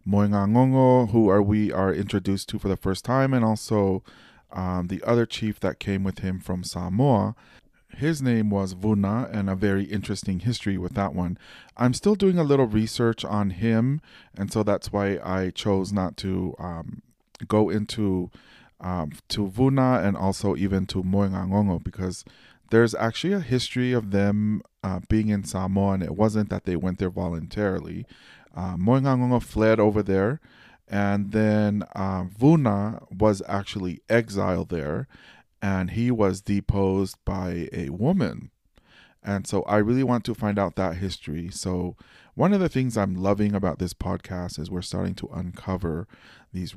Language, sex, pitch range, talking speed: English, male, 95-110 Hz, 165 wpm